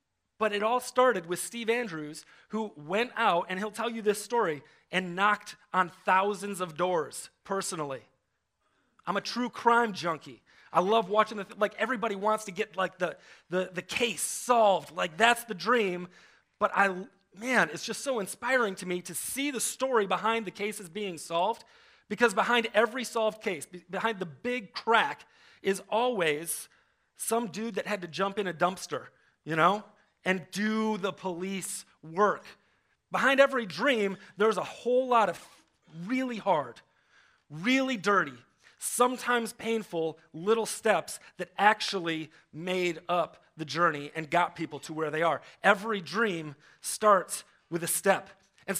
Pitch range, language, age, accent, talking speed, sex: 180-230 Hz, English, 30-49, American, 160 wpm, male